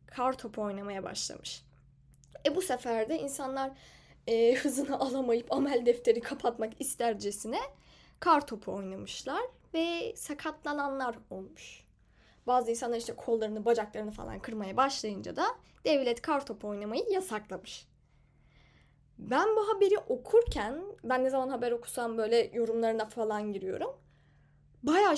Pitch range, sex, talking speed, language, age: 190-300 Hz, female, 115 wpm, Turkish, 10-29